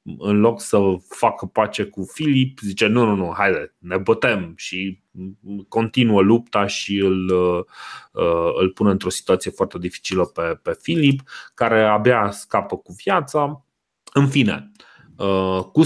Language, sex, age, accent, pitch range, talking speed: Romanian, male, 30-49, native, 85-105 Hz, 135 wpm